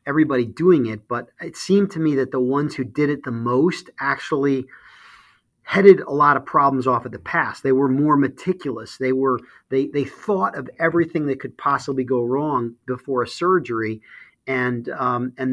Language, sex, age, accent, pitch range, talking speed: English, male, 40-59, American, 130-160 Hz, 185 wpm